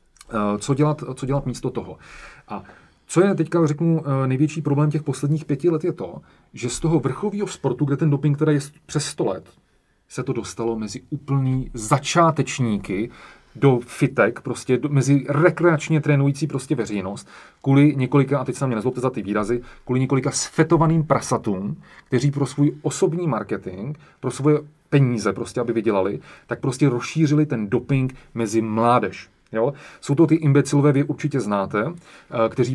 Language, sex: Czech, male